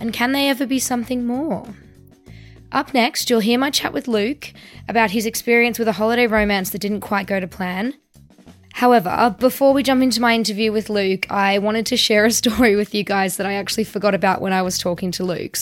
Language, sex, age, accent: English, female, 10-29, Australian